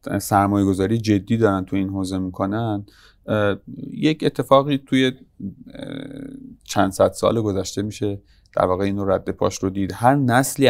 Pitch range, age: 95-115 Hz, 30-49